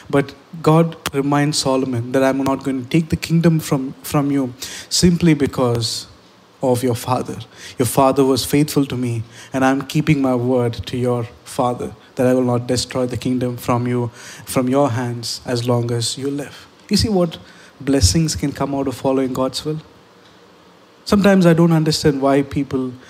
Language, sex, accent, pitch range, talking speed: English, male, Indian, 125-155 Hz, 175 wpm